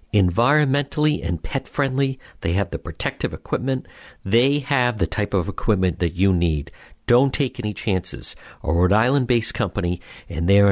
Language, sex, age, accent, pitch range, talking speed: English, male, 50-69, American, 90-135 Hz, 155 wpm